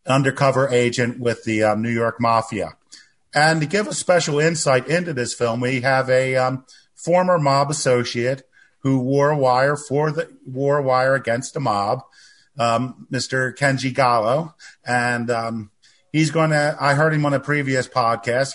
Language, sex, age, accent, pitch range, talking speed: English, male, 40-59, American, 125-145 Hz, 160 wpm